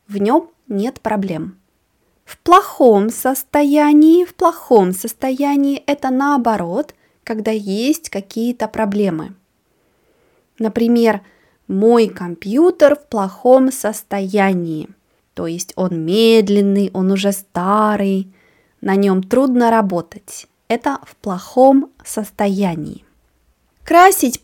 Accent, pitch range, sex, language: native, 200-275 Hz, female, Russian